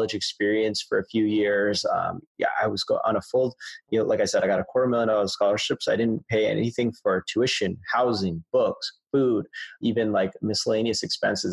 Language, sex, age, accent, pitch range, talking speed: English, male, 20-39, American, 100-120 Hz, 200 wpm